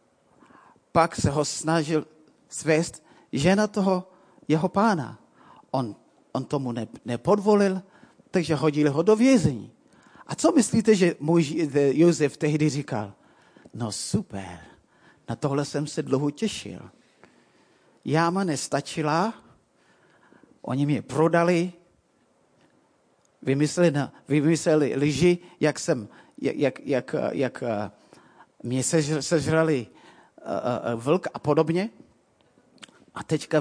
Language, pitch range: Czech, 140-170 Hz